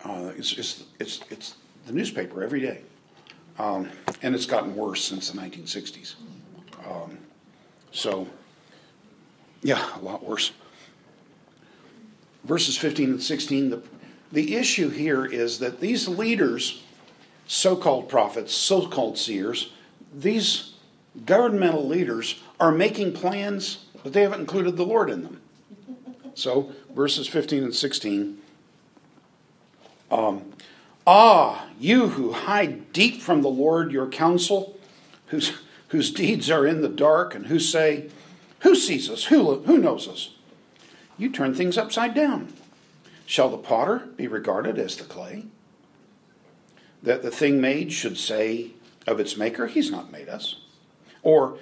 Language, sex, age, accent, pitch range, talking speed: English, male, 50-69, American, 140-220 Hz, 130 wpm